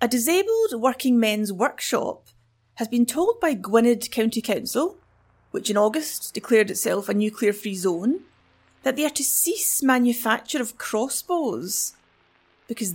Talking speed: 140 wpm